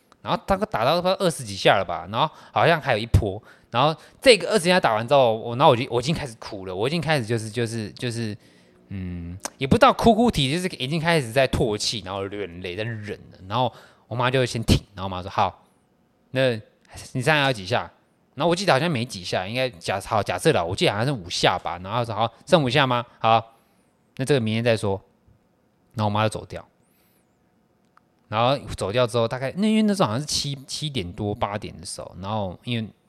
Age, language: 20-39, Chinese